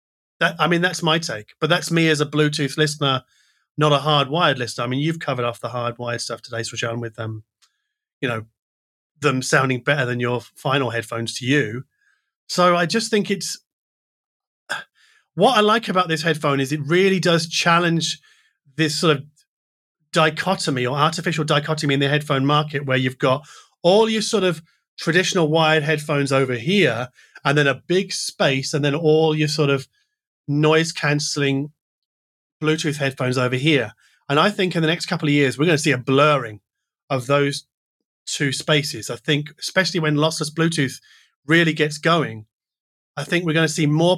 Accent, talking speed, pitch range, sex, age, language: British, 180 wpm, 135-170 Hz, male, 30-49, English